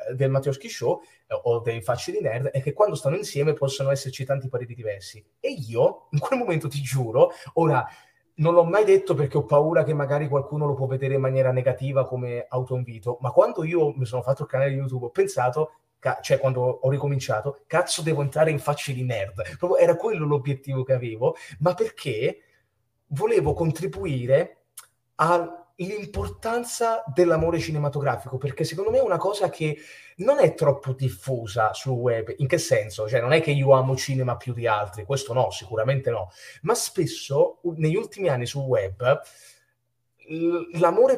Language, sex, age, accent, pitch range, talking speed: Italian, male, 30-49, native, 130-175 Hz, 180 wpm